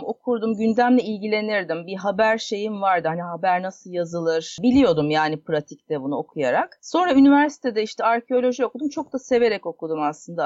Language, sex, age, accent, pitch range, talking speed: Turkish, female, 40-59, native, 170-260 Hz, 150 wpm